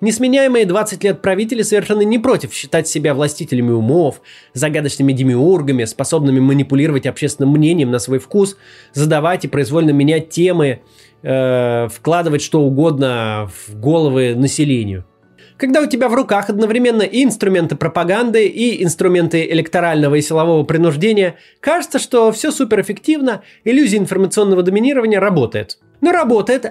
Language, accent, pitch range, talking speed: Russian, native, 145-215 Hz, 130 wpm